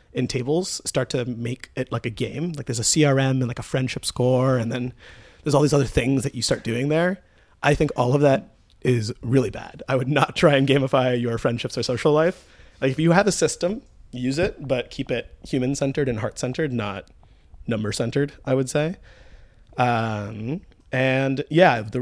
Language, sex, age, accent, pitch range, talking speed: English, male, 30-49, American, 115-140 Hz, 205 wpm